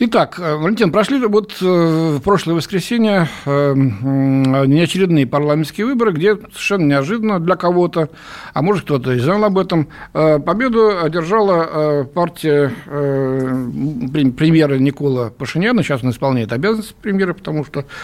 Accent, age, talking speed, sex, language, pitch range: native, 60-79, 135 wpm, male, Russian, 140-190 Hz